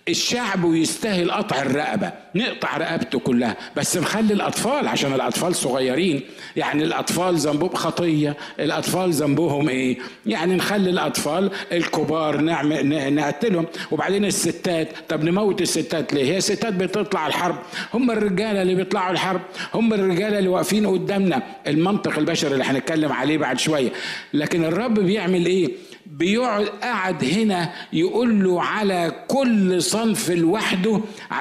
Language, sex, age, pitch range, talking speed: Arabic, male, 50-69, 150-195 Hz, 120 wpm